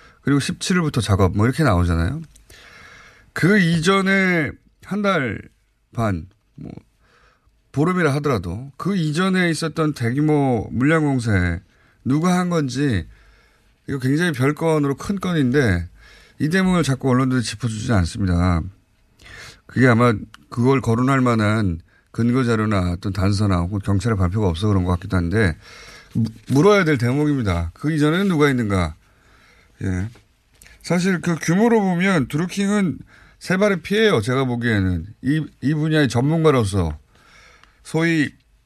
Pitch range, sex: 100-155 Hz, male